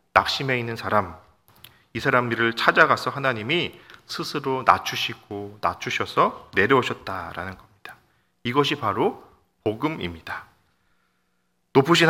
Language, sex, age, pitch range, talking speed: English, male, 40-59, 95-135 Hz, 80 wpm